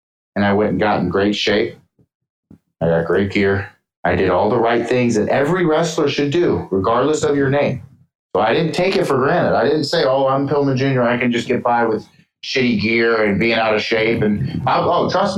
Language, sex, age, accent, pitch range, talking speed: English, male, 30-49, American, 95-120 Hz, 225 wpm